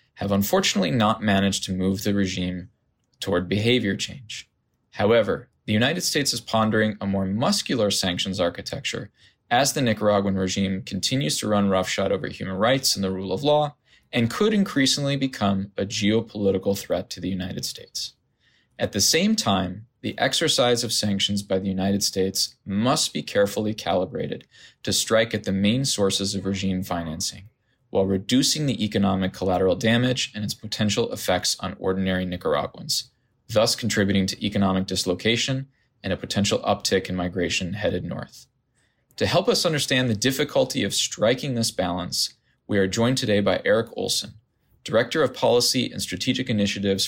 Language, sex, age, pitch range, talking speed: English, male, 20-39, 95-125 Hz, 155 wpm